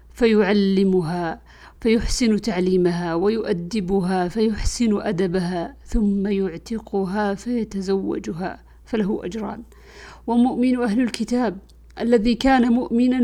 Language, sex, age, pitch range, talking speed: Arabic, female, 50-69, 185-220 Hz, 75 wpm